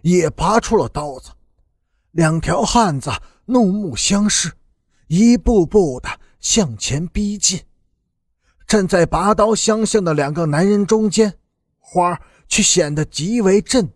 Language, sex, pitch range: Chinese, male, 150-215 Hz